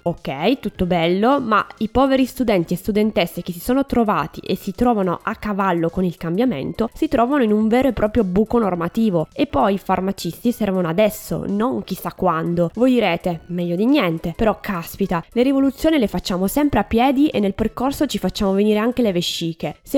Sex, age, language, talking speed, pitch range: female, 20-39, Italian, 190 wpm, 180-235 Hz